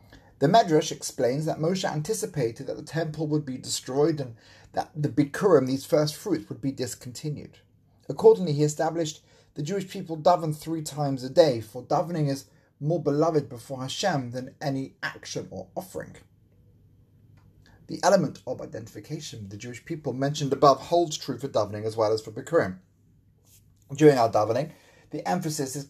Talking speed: 160 wpm